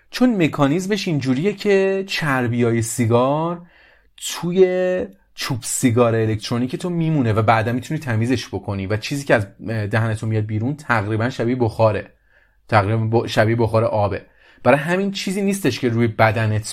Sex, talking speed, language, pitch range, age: male, 135 wpm, English, 110-145 Hz, 30-49